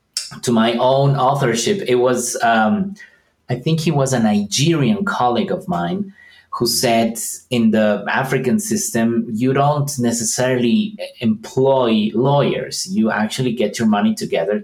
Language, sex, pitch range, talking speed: English, male, 125-185 Hz, 135 wpm